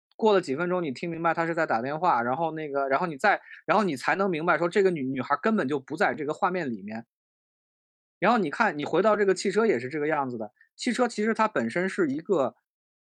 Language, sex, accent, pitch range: Chinese, male, native, 145-205 Hz